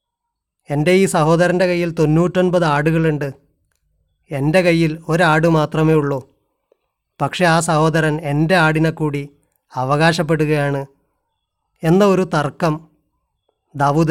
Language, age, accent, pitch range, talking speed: Malayalam, 30-49, native, 140-175 Hz, 85 wpm